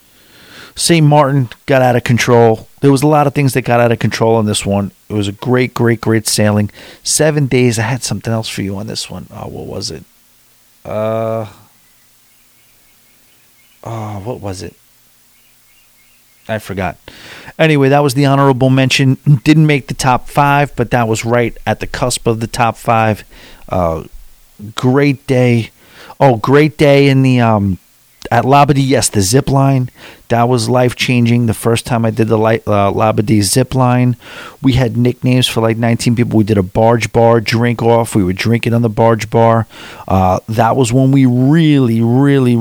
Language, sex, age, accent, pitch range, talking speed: English, male, 40-59, American, 110-130 Hz, 180 wpm